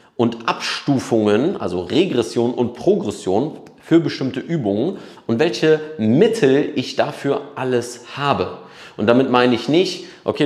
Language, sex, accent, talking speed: German, male, German, 125 wpm